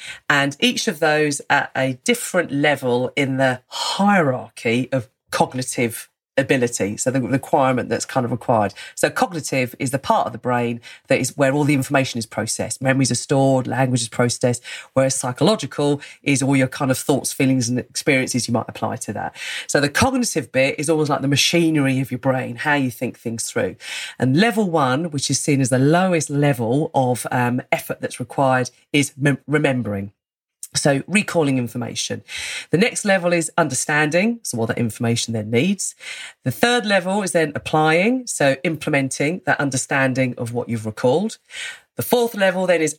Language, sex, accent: English, female, British